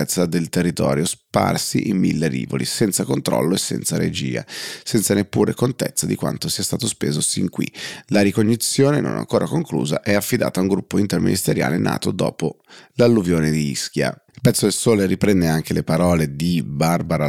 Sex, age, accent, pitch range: male, 30-49, native, 85-105 Hz